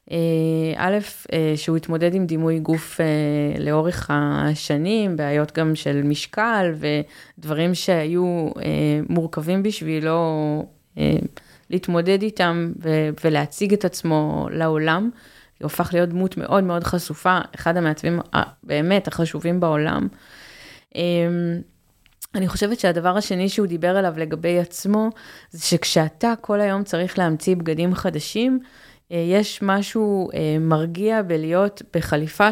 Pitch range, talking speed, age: 160-195 Hz, 105 wpm, 20-39